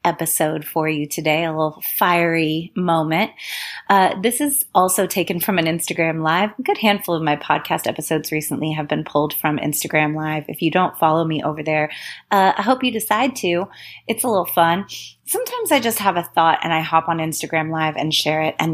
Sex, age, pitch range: female, 30-49, 155-205 Hz